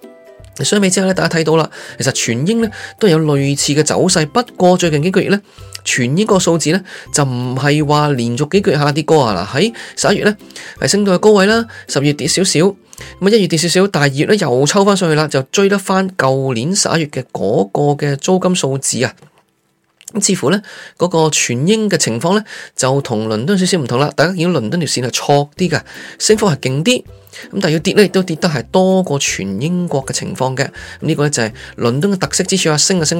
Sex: male